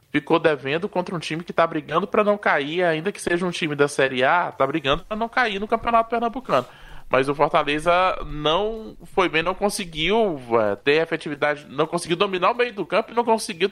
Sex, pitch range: male, 145-180 Hz